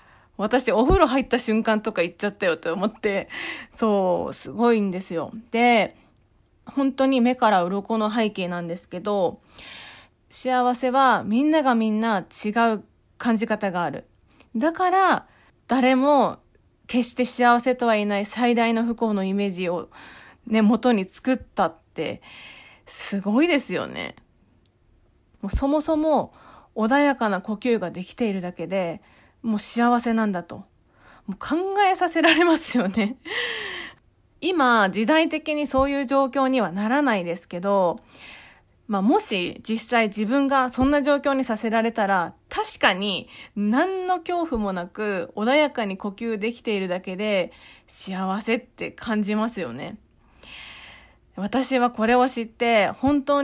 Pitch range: 205-265 Hz